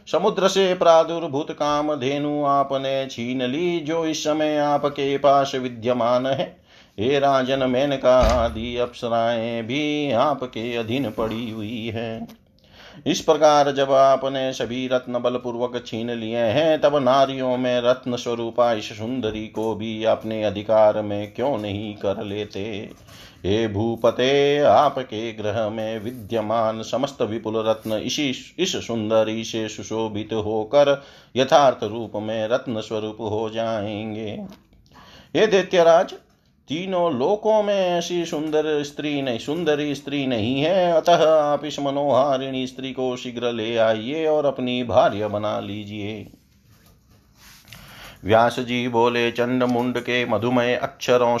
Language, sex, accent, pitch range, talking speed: Hindi, male, native, 110-145 Hz, 125 wpm